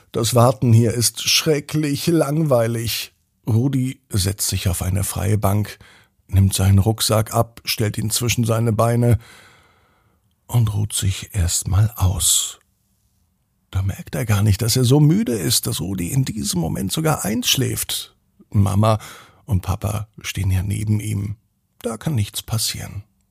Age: 50-69